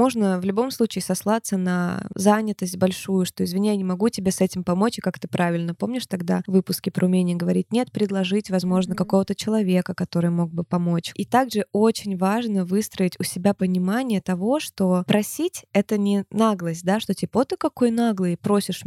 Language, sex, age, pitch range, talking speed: Russian, female, 20-39, 185-215 Hz, 185 wpm